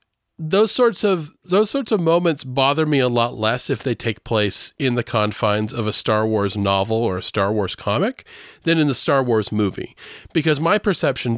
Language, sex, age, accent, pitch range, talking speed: English, male, 40-59, American, 115-165 Hz, 200 wpm